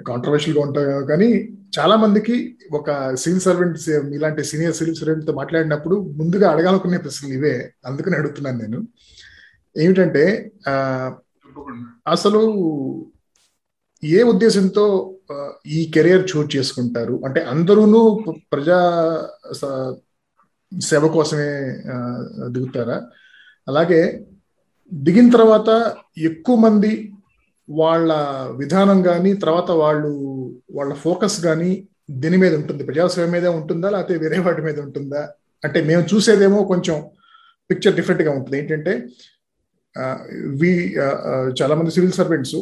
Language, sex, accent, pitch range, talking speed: Telugu, male, native, 140-185 Hz, 100 wpm